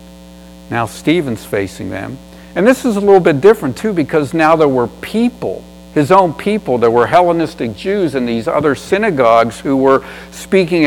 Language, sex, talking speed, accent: English, male, 170 wpm, American